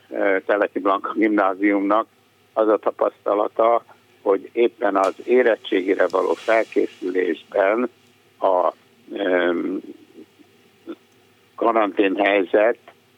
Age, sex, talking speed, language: 60-79, male, 65 wpm, Hungarian